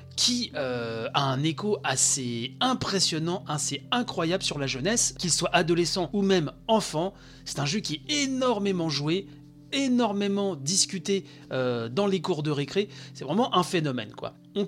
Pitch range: 140-195 Hz